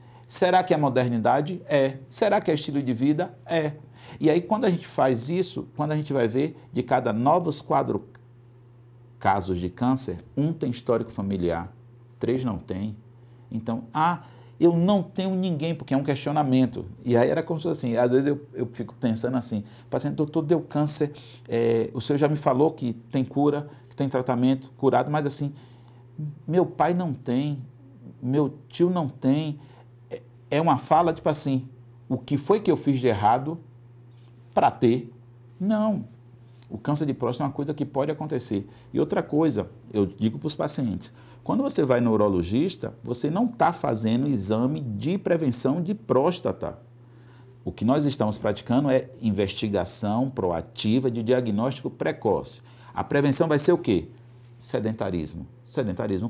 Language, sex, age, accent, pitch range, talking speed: Portuguese, male, 50-69, Brazilian, 120-150 Hz, 165 wpm